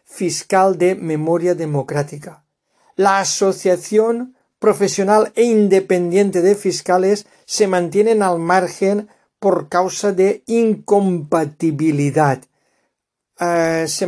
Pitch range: 160-195 Hz